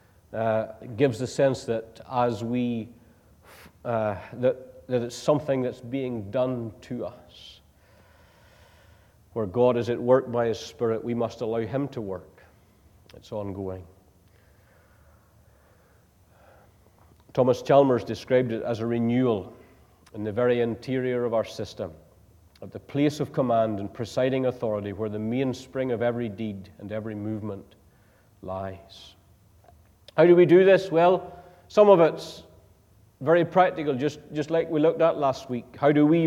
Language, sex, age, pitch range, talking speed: English, male, 50-69, 100-150 Hz, 145 wpm